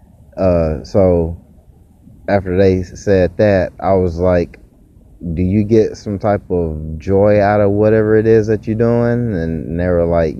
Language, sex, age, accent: English, male, 20-39, American